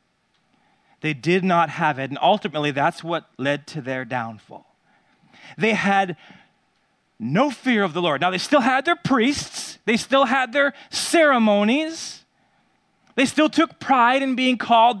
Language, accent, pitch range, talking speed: English, American, 145-225 Hz, 150 wpm